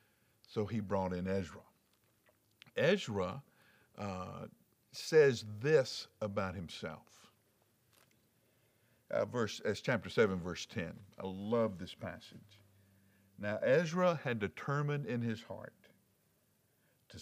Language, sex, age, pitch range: English, male, 60-79, 100-125 Hz